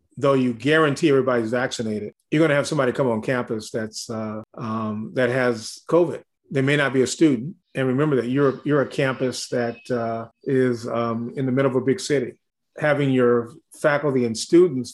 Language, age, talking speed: English, 40-59, 195 wpm